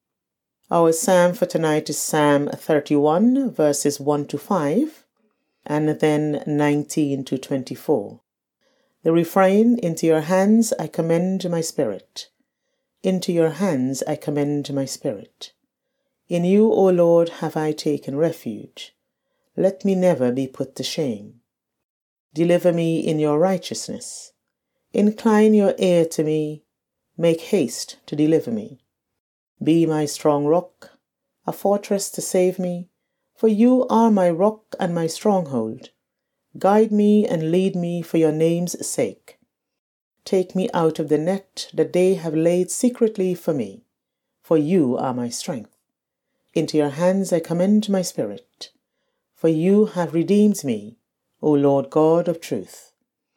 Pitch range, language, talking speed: 155-195 Hz, English, 140 wpm